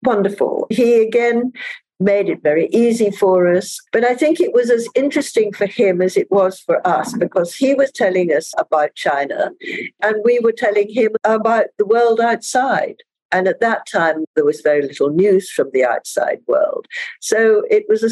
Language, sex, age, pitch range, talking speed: English, female, 60-79, 165-275 Hz, 185 wpm